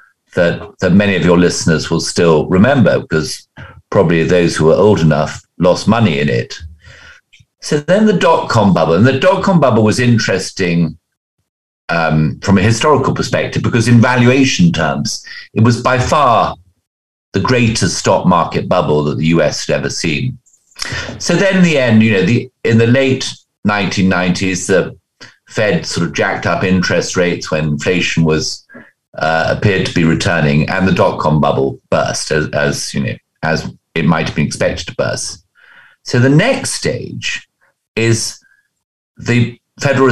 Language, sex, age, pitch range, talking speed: English, male, 50-69, 85-125 Hz, 160 wpm